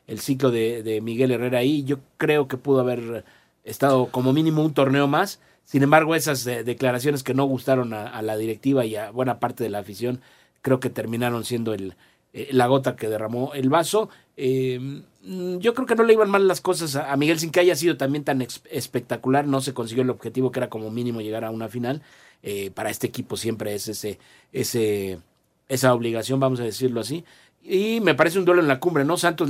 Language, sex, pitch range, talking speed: Spanish, male, 120-150 Hz, 220 wpm